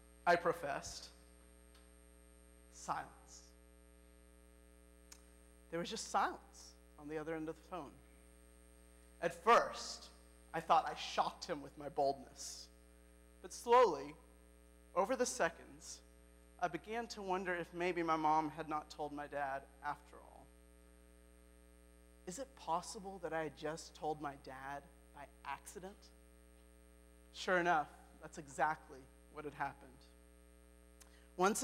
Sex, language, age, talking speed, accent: male, English, 40-59, 120 wpm, American